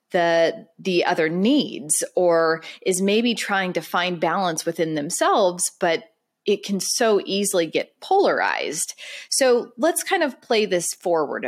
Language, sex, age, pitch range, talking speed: English, female, 30-49, 170-230 Hz, 140 wpm